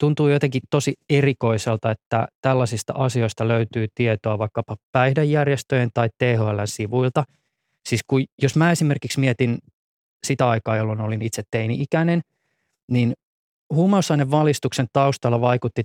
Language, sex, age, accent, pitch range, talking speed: Finnish, male, 20-39, native, 115-150 Hz, 115 wpm